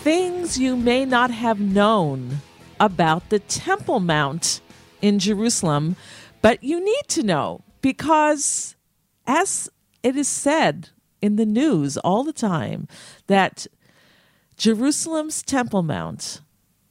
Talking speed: 115 wpm